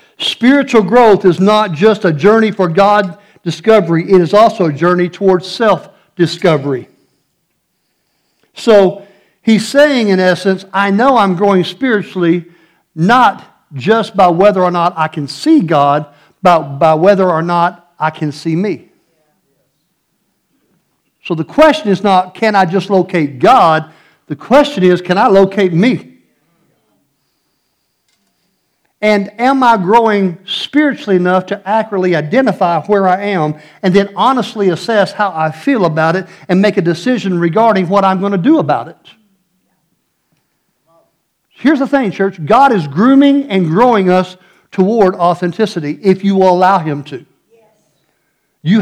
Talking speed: 140 wpm